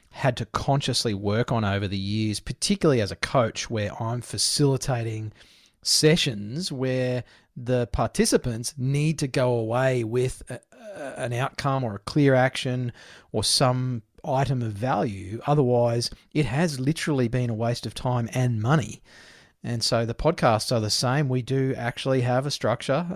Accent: Australian